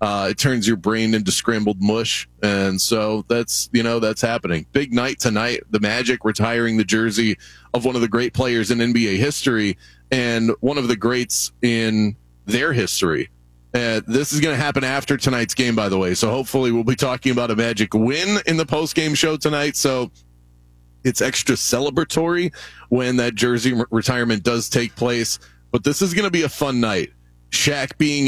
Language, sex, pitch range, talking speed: English, male, 105-135 Hz, 185 wpm